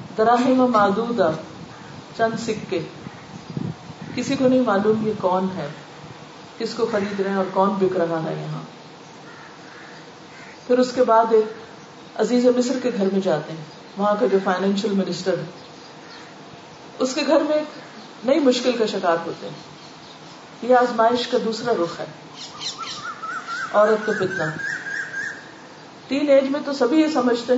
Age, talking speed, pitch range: 40-59, 110 wpm, 185-250 Hz